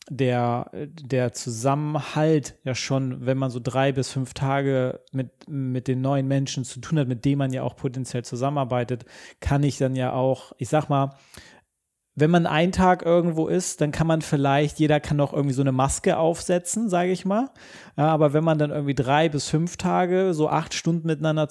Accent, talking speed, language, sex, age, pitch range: German, 195 wpm, German, male, 30-49, 130-150 Hz